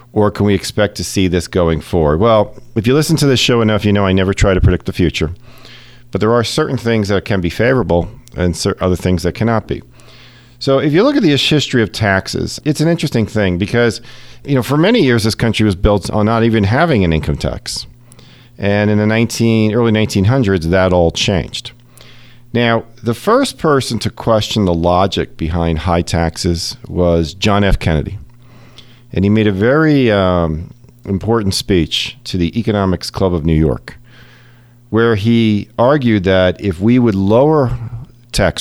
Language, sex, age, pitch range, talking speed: English, male, 40-59, 95-120 Hz, 185 wpm